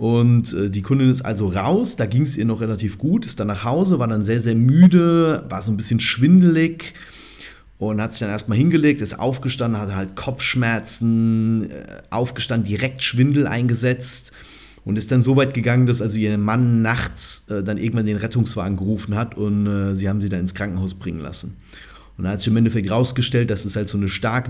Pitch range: 105-130 Hz